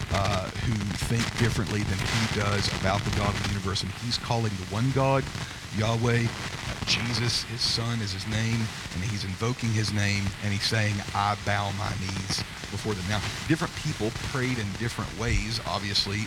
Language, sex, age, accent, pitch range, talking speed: English, male, 40-59, American, 100-120 Hz, 180 wpm